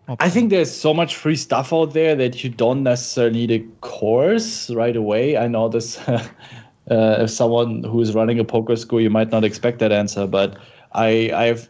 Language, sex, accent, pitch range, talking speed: English, male, German, 115-125 Hz, 200 wpm